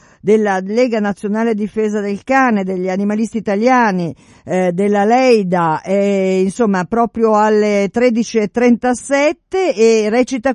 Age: 50-69